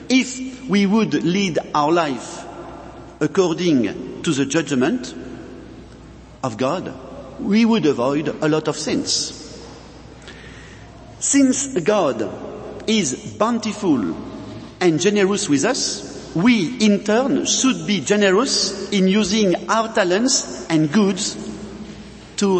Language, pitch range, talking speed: English, 170-225 Hz, 105 wpm